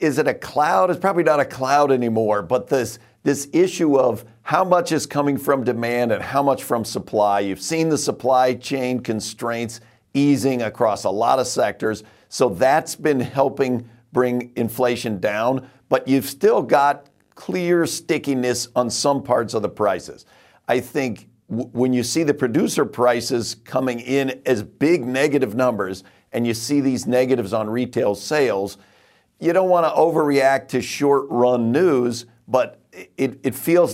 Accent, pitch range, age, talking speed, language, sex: American, 120-140 Hz, 50-69, 165 wpm, English, male